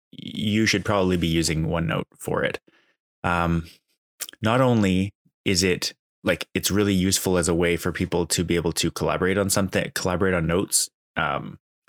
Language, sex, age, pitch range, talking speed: English, male, 20-39, 85-100 Hz, 165 wpm